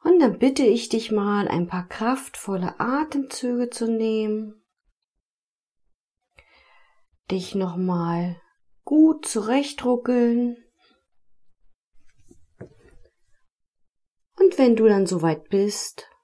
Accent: German